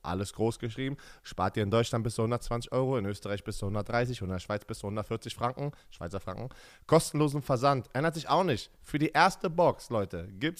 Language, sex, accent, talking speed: German, male, German, 210 wpm